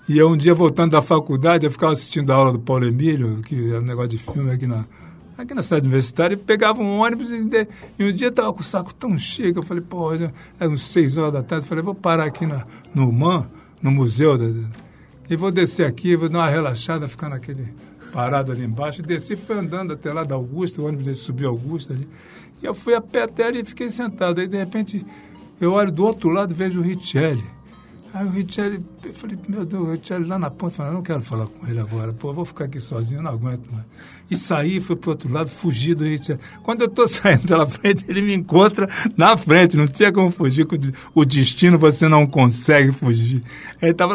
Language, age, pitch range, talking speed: Portuguese, 60-79, 145-200 Hz, 230 wpm